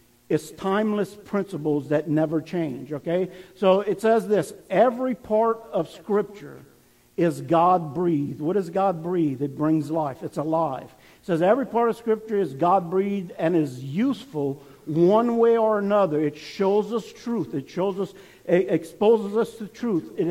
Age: 50-69